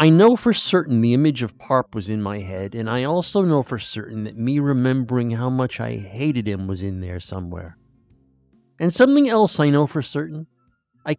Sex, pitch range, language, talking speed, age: male, 110-160 Hz, English, 205 wpm, 50-69